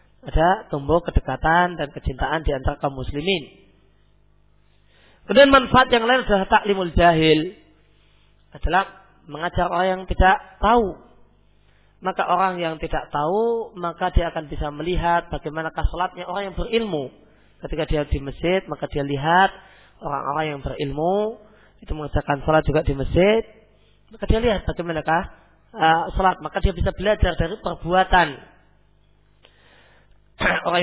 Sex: male